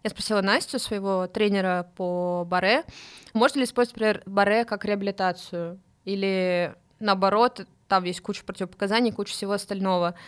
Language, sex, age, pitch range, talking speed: Russian, female, 20-39, 185-215 Hz, 130 wpm